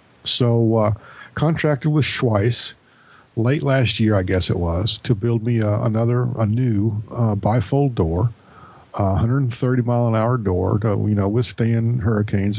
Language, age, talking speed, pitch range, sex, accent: English, 50-69, 155 wpm, 95-115 Hz, male, American